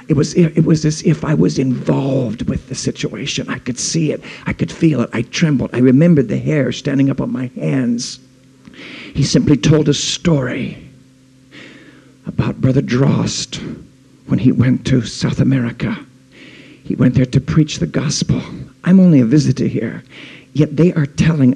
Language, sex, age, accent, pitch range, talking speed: English, male, 50-69, American, 125-150 Hz, 170 wpm